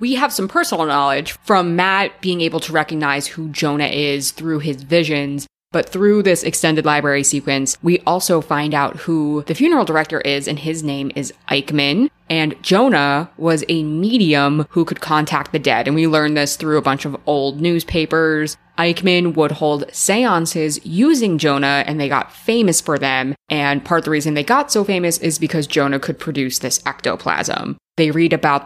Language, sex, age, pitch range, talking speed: English, female, 20-39, 145-175 Hz, 185 wpm